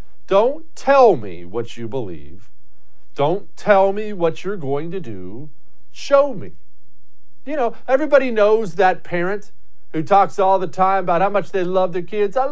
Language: English